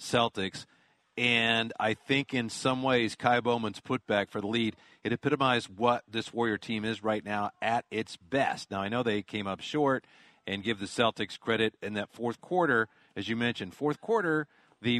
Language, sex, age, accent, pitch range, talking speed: English, male, 40-59, American, 100-130 Hz, 190 wpm